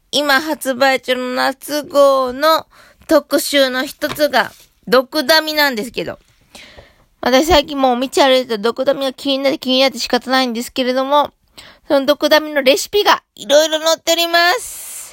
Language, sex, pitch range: Japanese, female, 245-335 Hz